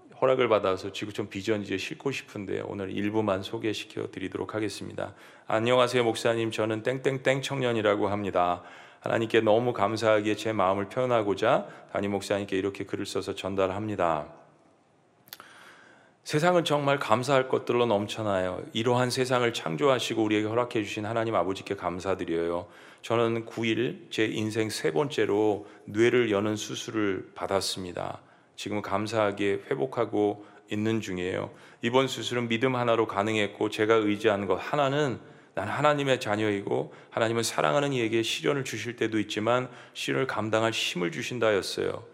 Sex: male